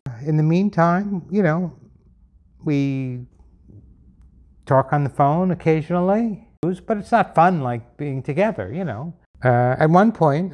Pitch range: 115-140 Hz